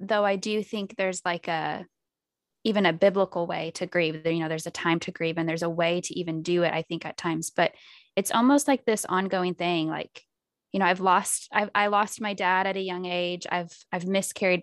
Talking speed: 225 wpm